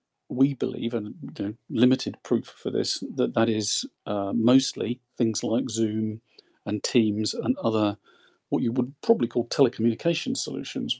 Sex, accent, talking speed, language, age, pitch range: male, British, 140 wpm, English, 40-59, 115-135 Hz